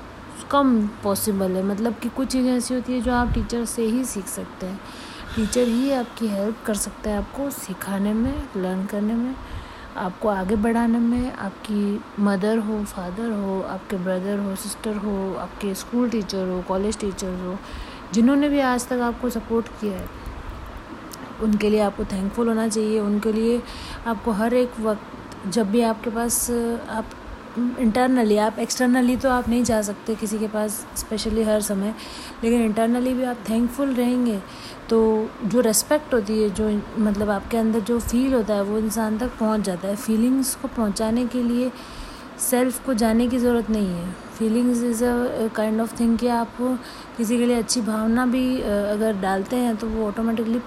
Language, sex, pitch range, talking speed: Hindi, female, 210-245 Hz, 175 wpm